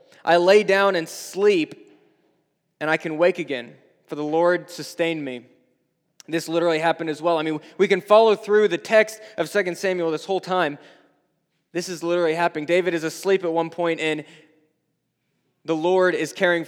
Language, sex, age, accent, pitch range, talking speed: English, male, 20-39, American, 160-210 Hz, 175 wpm